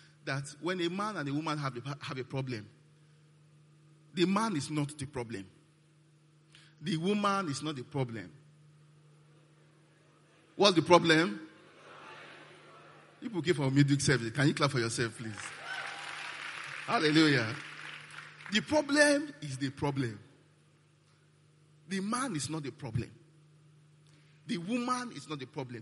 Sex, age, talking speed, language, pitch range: male, 40-59, 135 wpm, English, 135-155 Hz